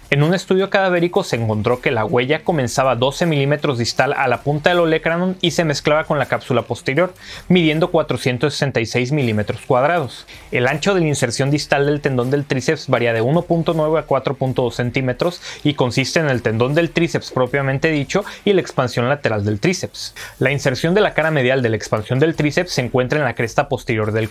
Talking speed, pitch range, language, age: 195 wpm, 120-160 Hz, Spanish, 30-49